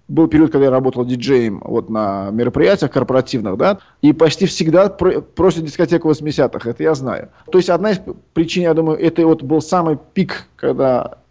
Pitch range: 130-160 Hz